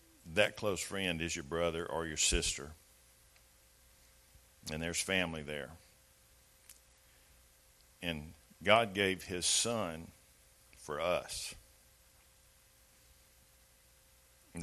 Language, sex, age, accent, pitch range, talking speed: English, male, 50-69, American, 75-90 Hz, 85 wpm